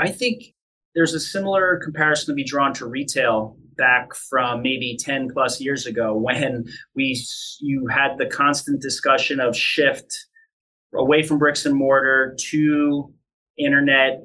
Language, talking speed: English, 145 wpm